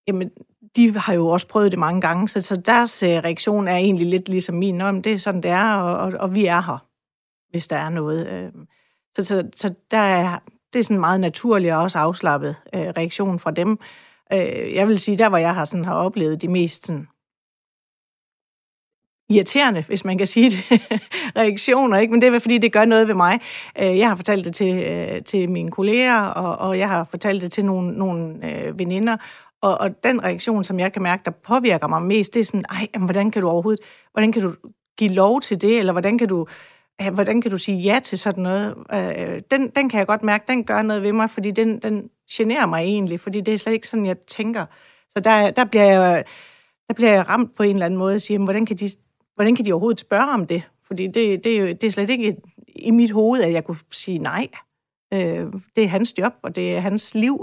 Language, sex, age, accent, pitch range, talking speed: Danish, female, 40-59, native, 180-220 Hz, 220 wpm